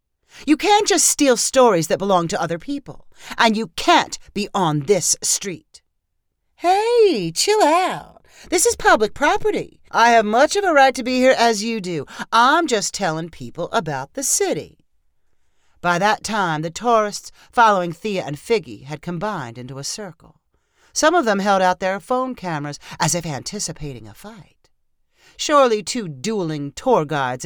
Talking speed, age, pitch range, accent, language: 165 wpm, 40-59, 160-240 Hz, American, English